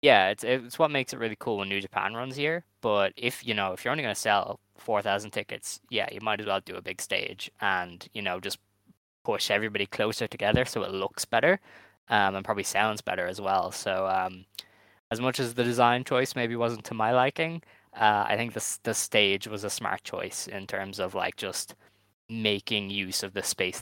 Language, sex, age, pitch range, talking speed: English, male, 10-29, 100-125 Hz, 220 wpm